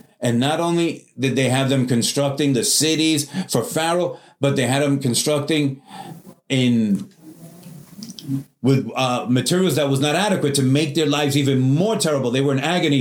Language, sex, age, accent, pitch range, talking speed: English, male, 50-69, American, 130-180 Hz, 165 wpm